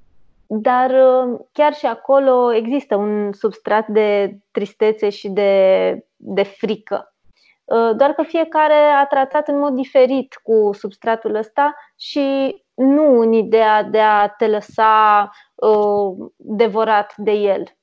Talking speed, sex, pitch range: 120 wpm, female, 215-270 Hz